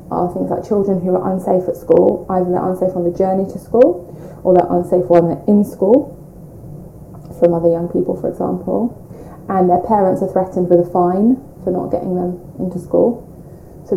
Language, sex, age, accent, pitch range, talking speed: English, female, 20-39, British, 175-185 Hz, 195 wpm